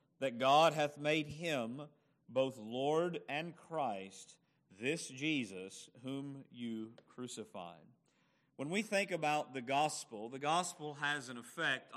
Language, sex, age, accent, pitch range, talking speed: English, male, 40-59, American, 145-200 Hz, 125 wpm